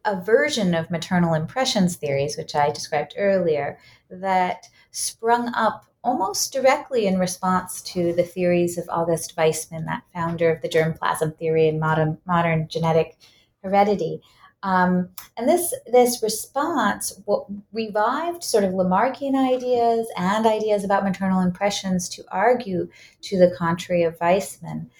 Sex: female